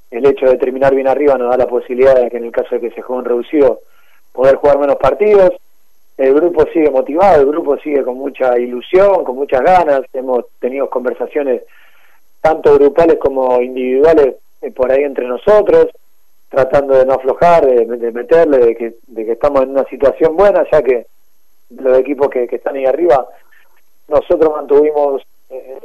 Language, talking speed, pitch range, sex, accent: Spanish, 180 wpm, 125-175 Hz, male, Argentinian